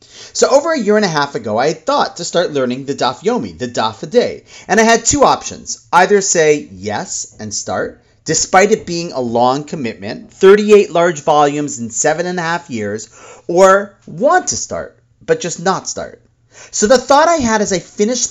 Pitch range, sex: 145-220 Hz, male